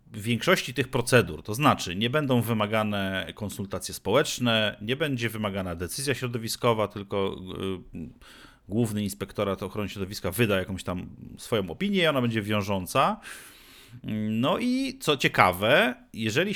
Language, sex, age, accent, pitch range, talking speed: Polish, male, 40-59, native, 100-125 Hz, 125 wpm